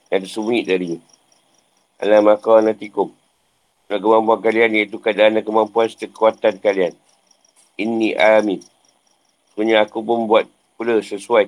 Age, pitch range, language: 50-69, 65-110 Hz, Malay